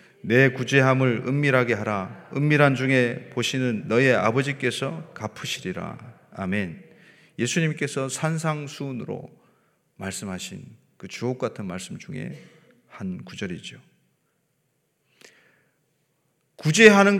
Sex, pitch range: male, 120-175 Hz